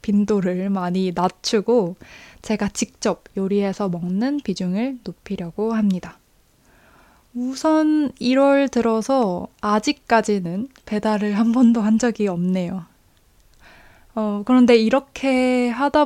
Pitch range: 195-250 Hz